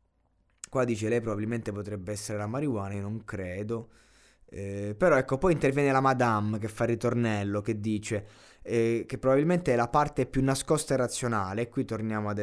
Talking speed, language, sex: 185 wpm, Italian, male